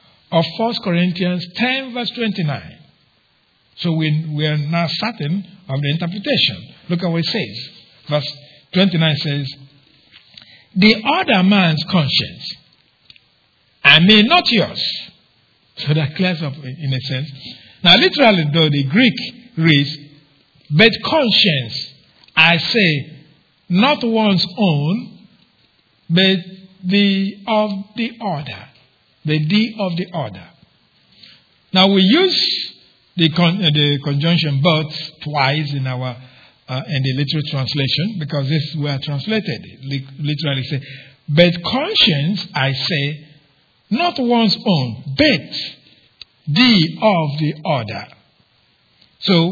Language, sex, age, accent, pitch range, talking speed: English, male, 50-69, Nigerian, 145-195 Hz, 120 wpm